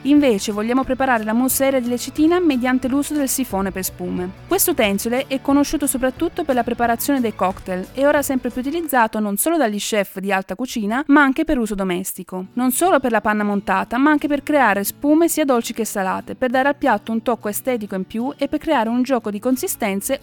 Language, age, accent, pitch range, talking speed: Italian, 30-49, native, 205-270 Hz, 215 wpm